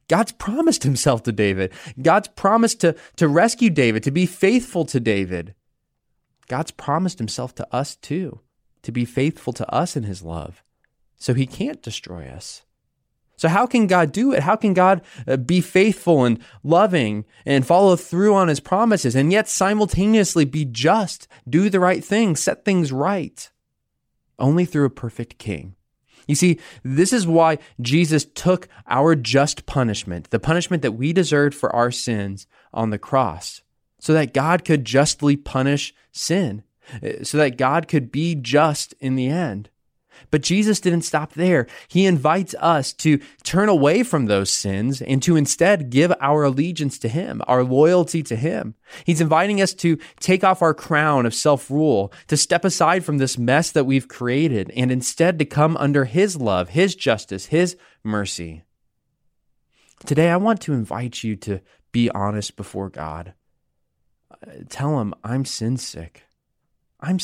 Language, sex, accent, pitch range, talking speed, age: English, male, American, 120-175 Hz, 160 wpm, 20-39